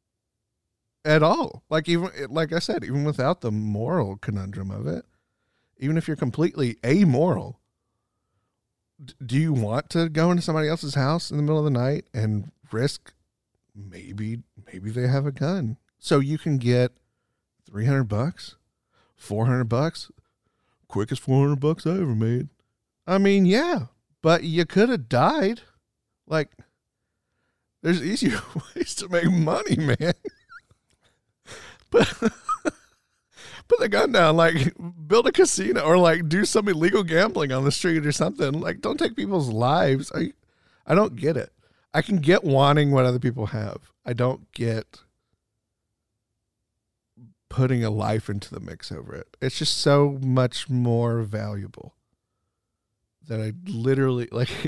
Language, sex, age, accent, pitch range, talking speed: English, male, 40-59, American, 110-160 Hz, 145 wpm